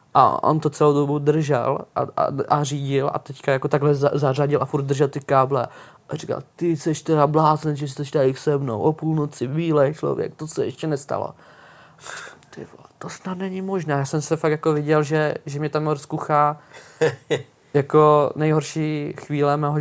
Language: Czech